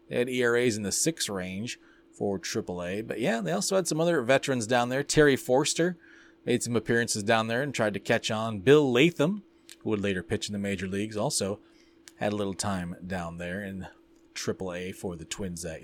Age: 30-49